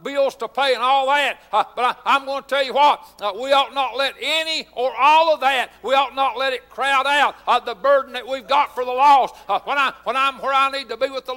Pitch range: 260-285 Hz